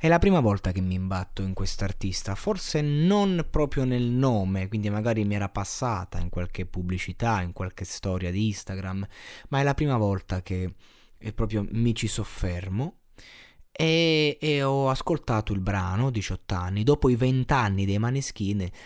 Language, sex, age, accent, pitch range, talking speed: Italian, male, 20-39, native, 95-125 Hz, 160 wpm